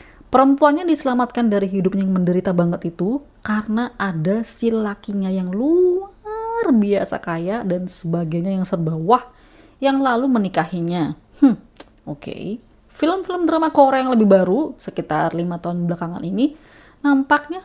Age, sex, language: 20-39, female, Indonesian